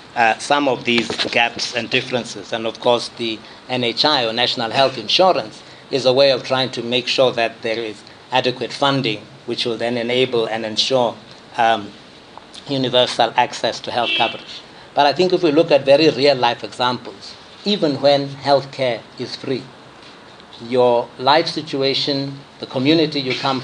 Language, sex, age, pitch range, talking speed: English, male, 60-79, 120-140 Hz, 165 wpm